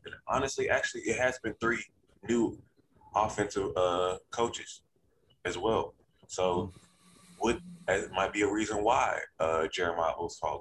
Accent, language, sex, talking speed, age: American, English, male, 140 wpm, 20-39